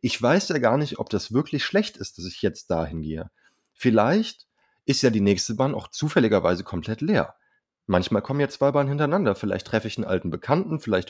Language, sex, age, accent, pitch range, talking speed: German, male, 30-49, German, 100-140 Hz, 205 wpm